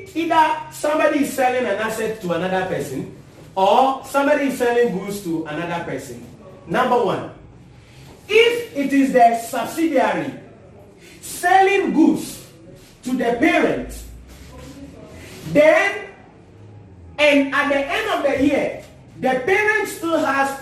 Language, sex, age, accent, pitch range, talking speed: English, male, 40-59, Nigerian, 200-295 Hz, 120 wpm